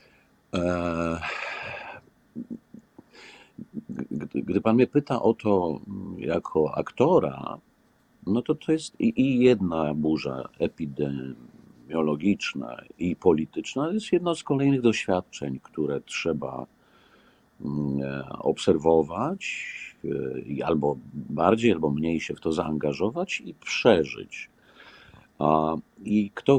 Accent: native